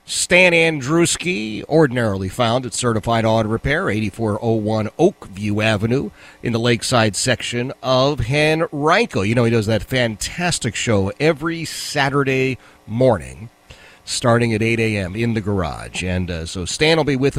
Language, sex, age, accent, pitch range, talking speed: English, male, 40-59, American, 105-145 Hz, 140 wpm